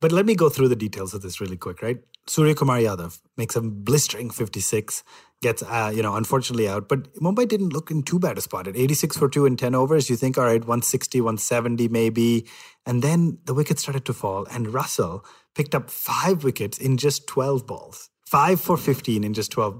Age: 30-49